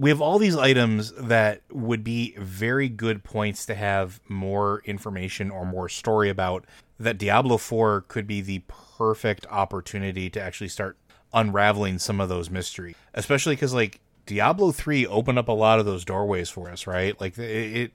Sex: male